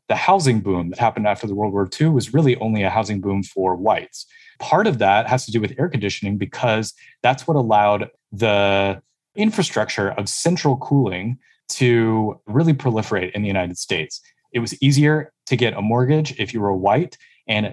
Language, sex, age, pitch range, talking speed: English, male, 20-39, 105-140 Hz, 185 wpm